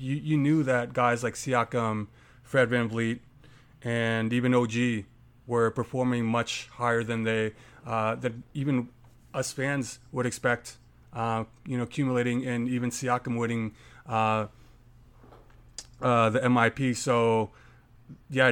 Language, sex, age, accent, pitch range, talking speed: English, male, 30-49, American, 115-130 Hz, 125 wpm